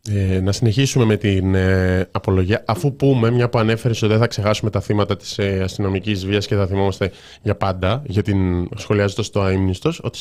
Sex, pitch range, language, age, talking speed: male, 100-135 Hz, Greek, 20-39, 190 wpm